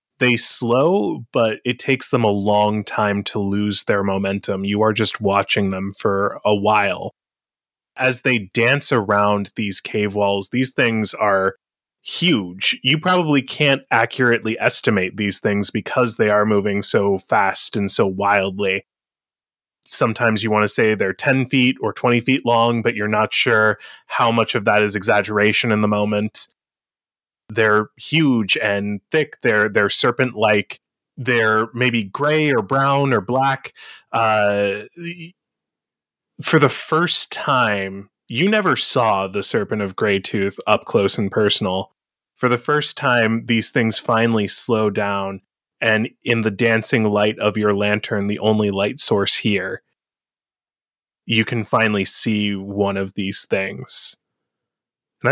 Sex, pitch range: male, 100-120 Hz